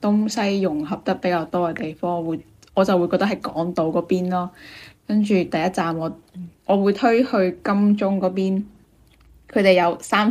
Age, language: 10-29, Chinese